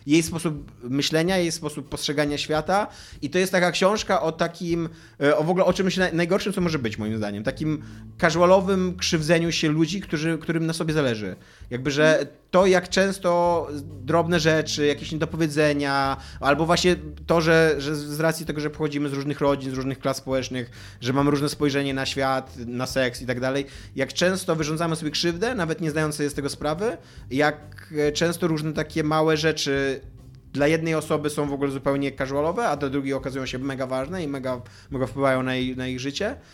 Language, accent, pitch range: Polish, native, 135-165 Hz